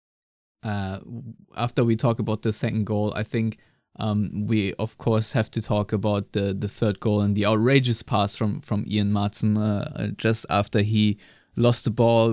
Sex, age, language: male, 20-39, English